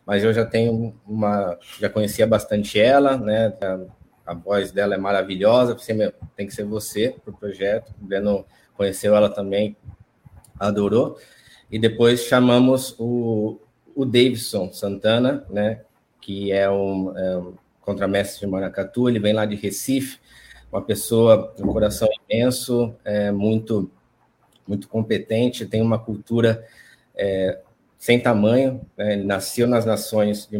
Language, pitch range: Portuguese, 100-115 Hz